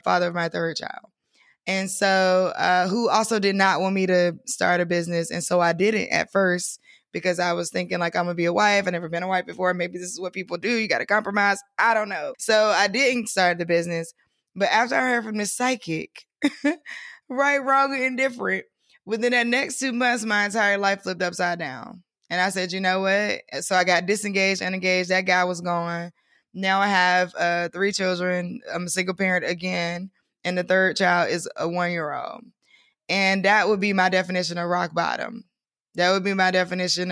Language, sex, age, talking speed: English, female, 20-39, 205 wpm